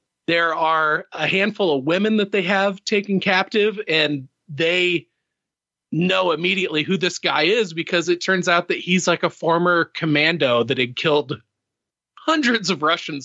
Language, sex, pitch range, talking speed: English, male, 140-180 Hz, 160 wpm